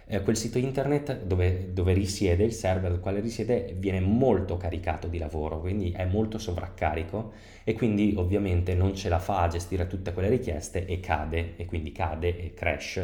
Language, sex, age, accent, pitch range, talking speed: Italian, male, 20-39, native, 85-100 Hz, 180 wpm